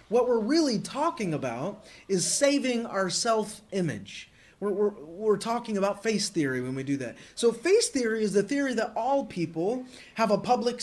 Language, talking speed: English, 170 wpm